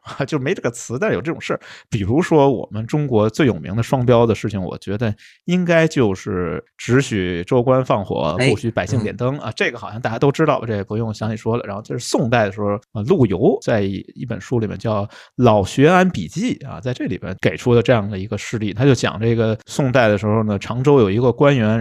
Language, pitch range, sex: Chinese, 105-140 Hz, male